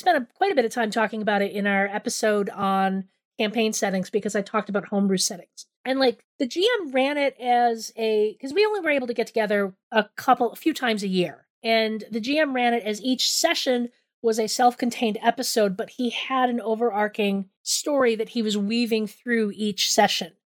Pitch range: 215-265 Hz